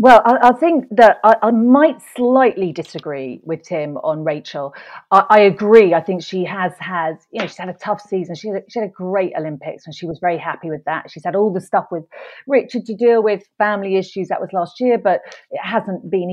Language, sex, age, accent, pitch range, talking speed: English, female, 40-59, British, 165-205 Hz, 230 wpm